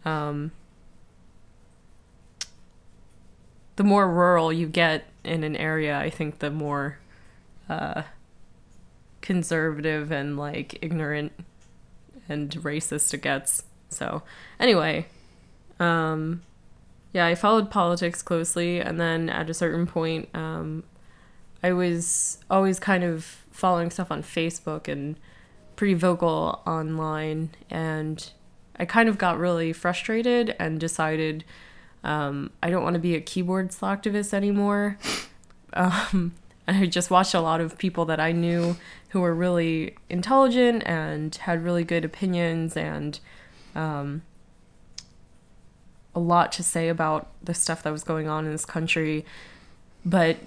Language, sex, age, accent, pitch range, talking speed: English, female, 20-39, American, 155-175 Hz, 125 wpm